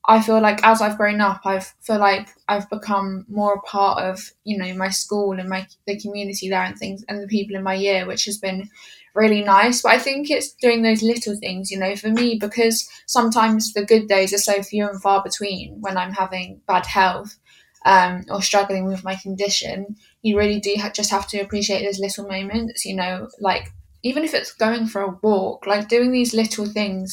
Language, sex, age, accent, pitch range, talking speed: English, female, 10-29, British, 195-225 Hz, 215 wpm